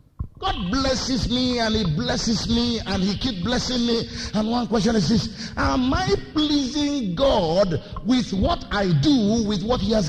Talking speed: 175 wpm